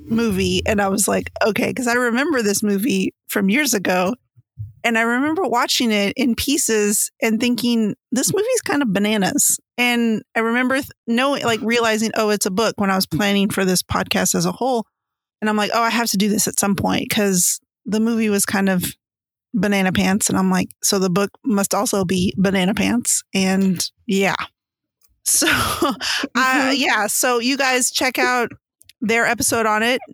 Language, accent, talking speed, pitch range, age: English, American, 190 wpm, 200-245 Hz, 30-49